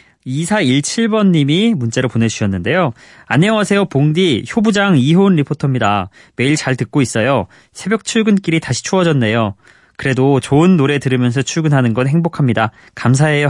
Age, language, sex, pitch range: 20-39, Korean, male, 110-155 Hz